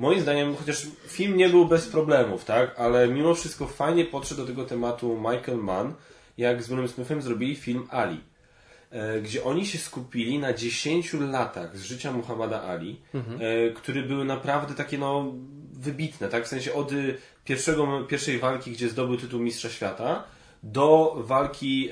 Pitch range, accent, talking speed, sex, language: 115-145 Hz, native, 155 wpm, male, Polish